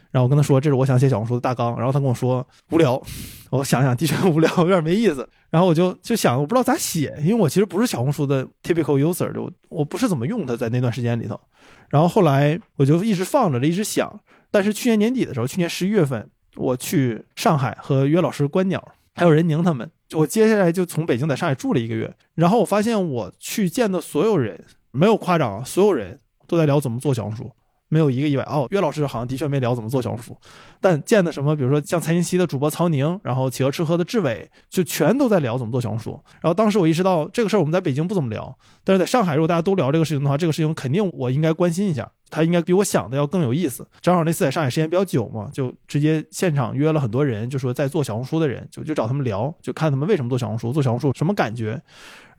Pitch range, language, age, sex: 130-180 Hz, Chinese, 20-39, male